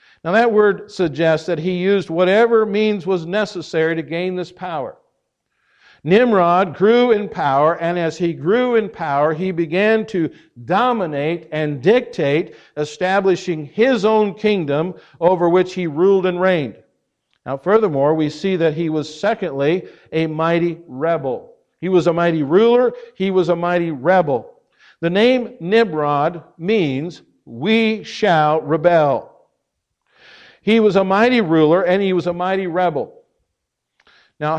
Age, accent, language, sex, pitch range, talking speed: 50-69, American, English, male, 160-210 Hz, 140 wpm